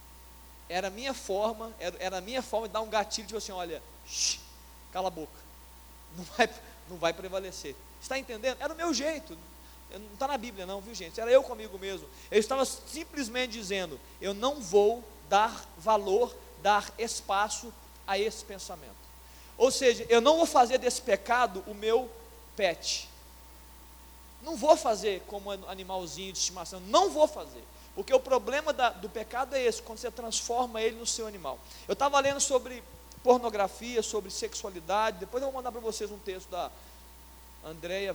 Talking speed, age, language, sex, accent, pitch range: 165 wpm, 20-39, Portuguese, male, Brazilian, 175-245 Hz